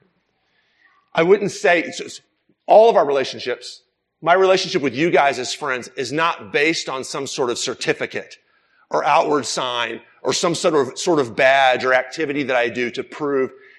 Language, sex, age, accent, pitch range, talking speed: English, male, 40-59, American, 145-210 Hz, 175 wpm